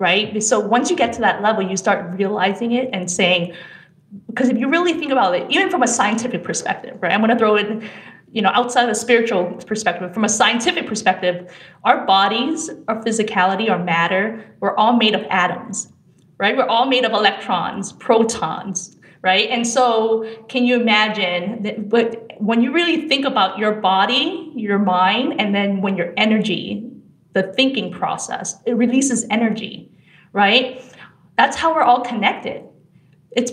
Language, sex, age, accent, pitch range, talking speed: English, female, 30-49, American, 190-240 Hz, 170 wpm